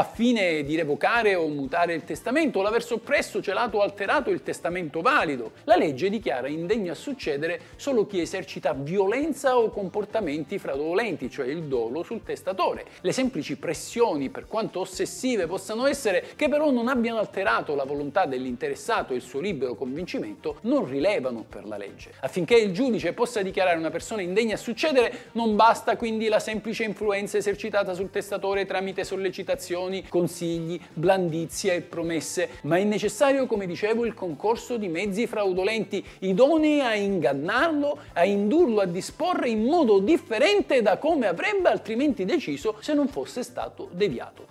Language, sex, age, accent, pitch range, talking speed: Italian, male, 50-69, native, 175-240 Hz, 155 wpm